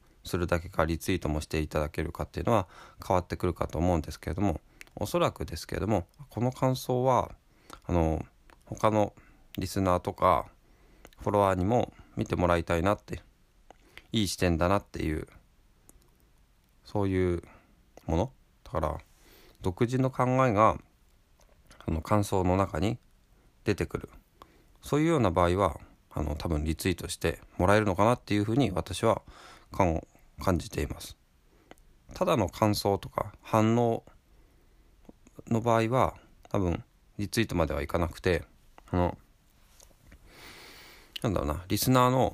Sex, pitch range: male, 85-110 Hz